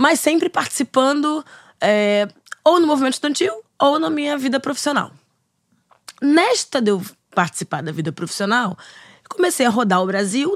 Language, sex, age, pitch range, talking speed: Portuguese, female, 20-39, 200-290 Hz, 135 wpm